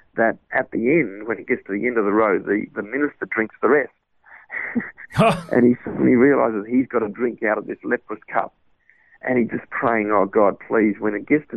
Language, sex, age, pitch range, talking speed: English, male, 50-69, 105-125 Hz, 225 wpm